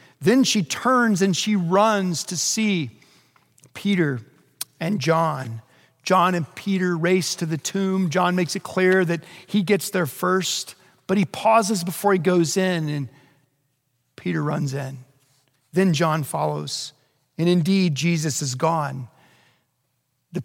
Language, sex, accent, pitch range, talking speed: English, male, American, 140-190 Hz, 140 wpm